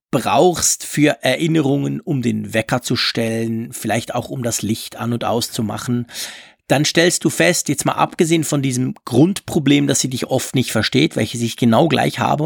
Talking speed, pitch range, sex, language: 180 wpm, 130-175 Hz, male, German